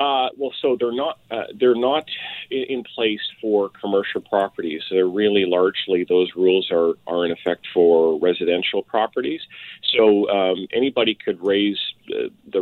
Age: 40-59